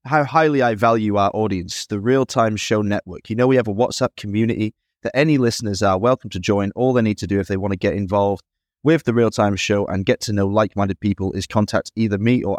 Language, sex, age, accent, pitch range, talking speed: English, male, 20-39, British, 95-115 Hz, 255 wpm